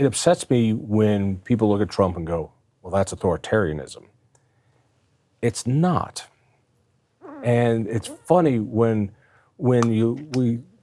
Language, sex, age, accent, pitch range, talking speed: English, male, 40-59, American, 100-130 Hz, 120 wpm